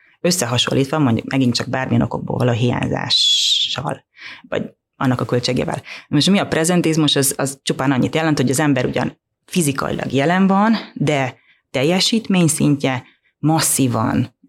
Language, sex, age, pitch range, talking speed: Hungarian, female, 30-49, 130-160 Hz, 135 wpm